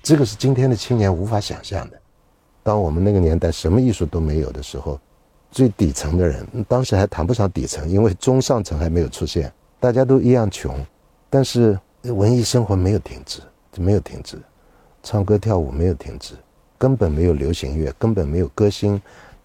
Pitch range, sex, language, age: 85-125 Hz, male, Chinese, 60-79